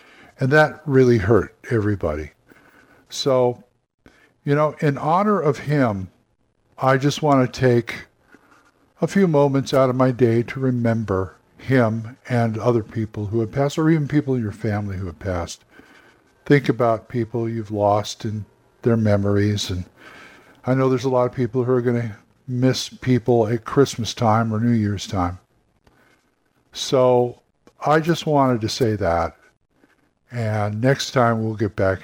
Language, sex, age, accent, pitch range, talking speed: English, male, 50-69, American, 105-135 Hz, 155 wpm